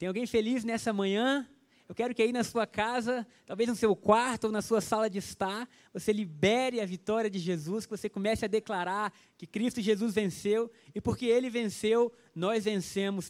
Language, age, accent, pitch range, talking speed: Portuguese, 20-39, Brazilian, 185-225 Hz, 195 wpm